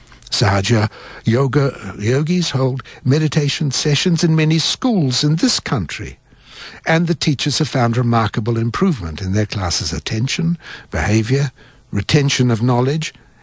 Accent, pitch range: British, 110-150 Hz